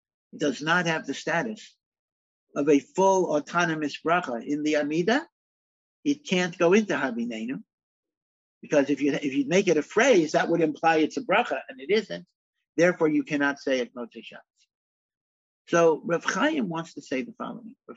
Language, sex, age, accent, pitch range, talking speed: English, male, 60-79, American, 145-180 Hz, 165 wpm